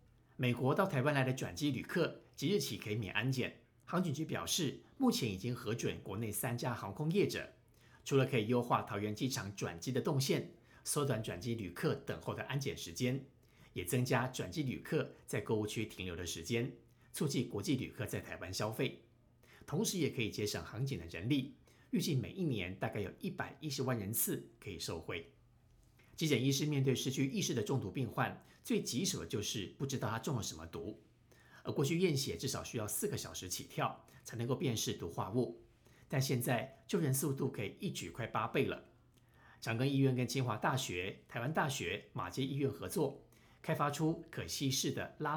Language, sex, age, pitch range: Chinese, male, 50-69, 115-145 Hz